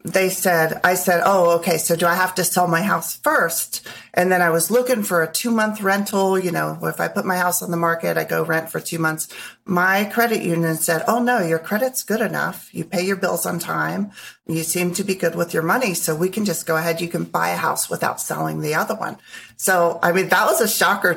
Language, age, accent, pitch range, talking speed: English, 30-49, American, 165-195 Hz, 250 wpm